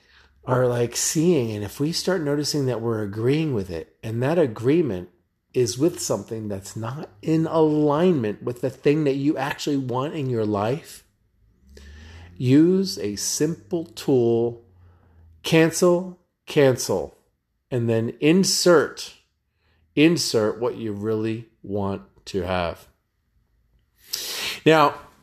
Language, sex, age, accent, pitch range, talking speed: English, male, 40-59, American, 110-150 Hz, 120 wpm